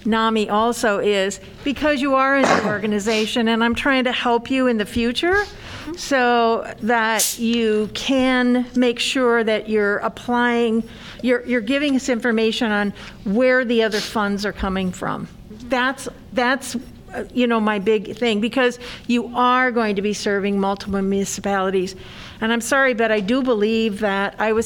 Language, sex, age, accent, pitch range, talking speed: English, female, 50-69, American, 200-245 Hz, 160 wpm